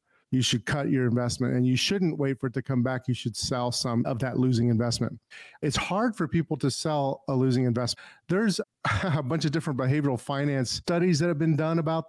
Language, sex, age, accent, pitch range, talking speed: English, male, 40-59, American, 130-165 Hz, 220 wpm